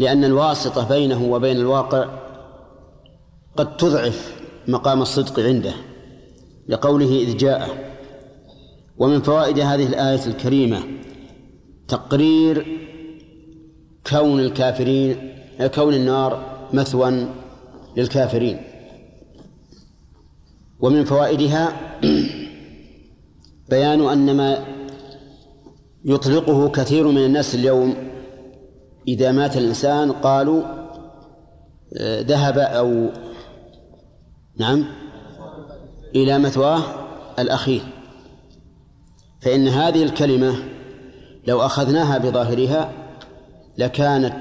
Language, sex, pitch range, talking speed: Arabic, male, 130-145 Hz, 70 wpm